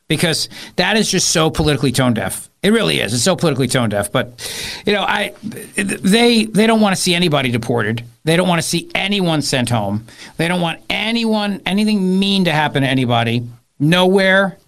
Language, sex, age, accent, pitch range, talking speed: English, male, 50-69, American, 140-190 Hz, 190 wpm